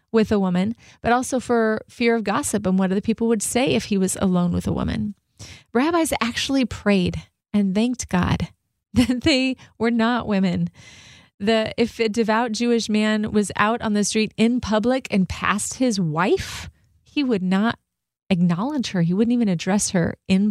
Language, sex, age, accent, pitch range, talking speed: English, female, 30-49, American, 195-240 Hz, 180 wpm